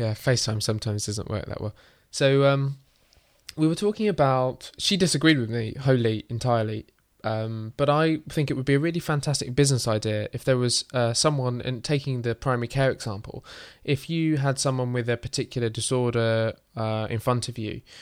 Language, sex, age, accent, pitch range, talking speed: English, male, 20-39, British, 110-135 Hz, 185 wpm